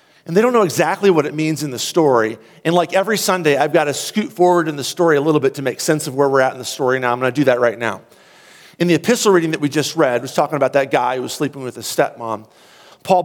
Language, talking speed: English, 295 wpm